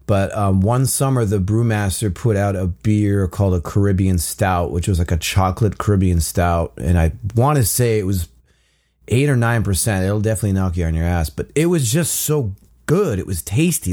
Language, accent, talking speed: English, American, 205 wpm